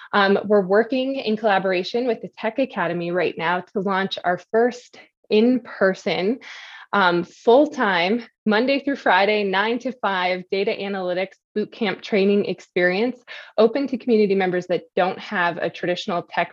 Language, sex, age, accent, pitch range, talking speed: English, female, 20-39, American, 175-215 Hz, 140 wpm